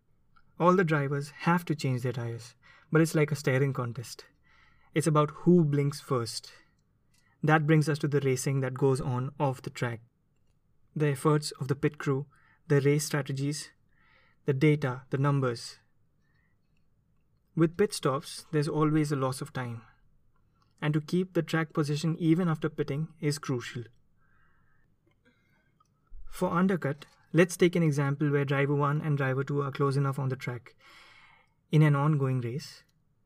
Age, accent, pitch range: 20-39, Indian, 135-155 Hz